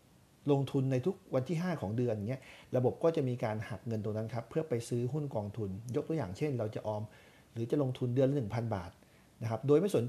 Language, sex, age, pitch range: Thai, male, 60-79, 110-145 Hz